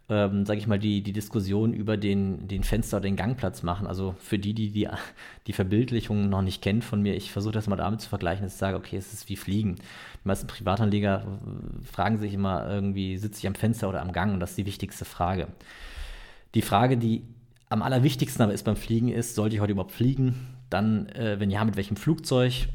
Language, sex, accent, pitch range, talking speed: German, male, German, 100-110 Hz, 220 wpm